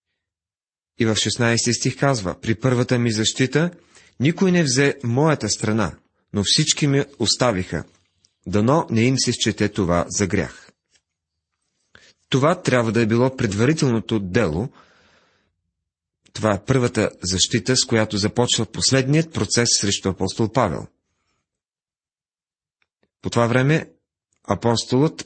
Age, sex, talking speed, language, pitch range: 40-59, male, 115 wpm, Bulgarian, 95-130 Hz